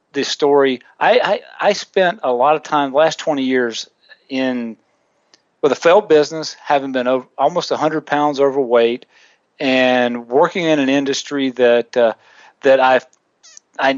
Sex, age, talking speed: male, 50-69, 155 wpm